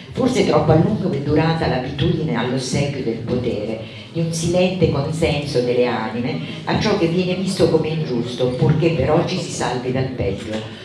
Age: 50-69